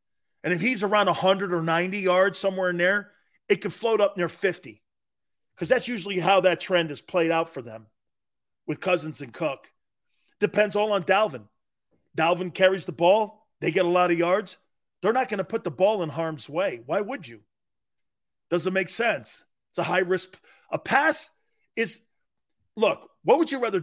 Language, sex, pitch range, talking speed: English, male, 155-210 Hz, 185 wpm